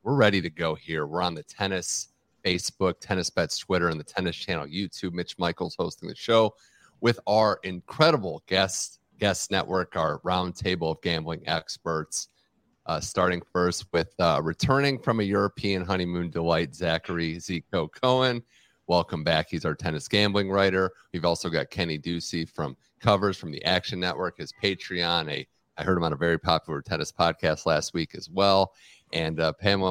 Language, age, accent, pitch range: English, 30-49, American, 85-105 Hz